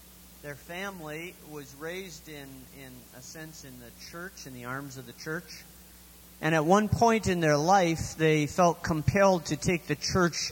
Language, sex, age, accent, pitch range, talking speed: English, male, 40-59, American, 130-155 Hz, 175 wpm